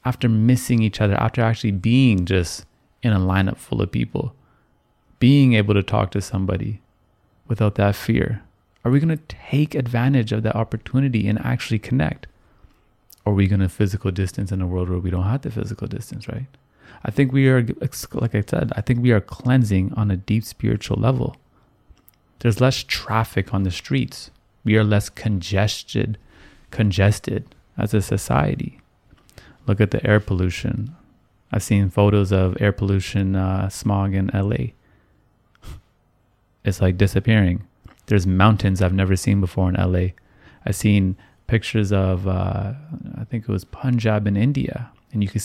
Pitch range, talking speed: 95-115 Hz, 165 wpm